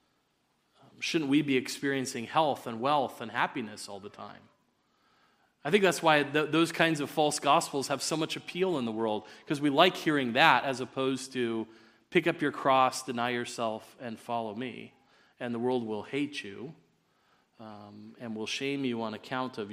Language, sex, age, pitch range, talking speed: English, male, 30-49, 110-135 Hz, 180 wpm